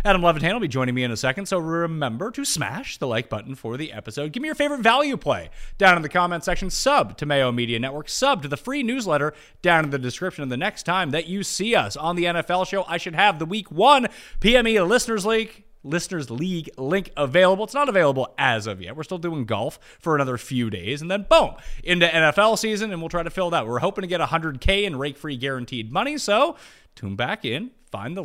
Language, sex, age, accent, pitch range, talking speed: English, male, 30-49, American, 135-195 Hz, 235 wpm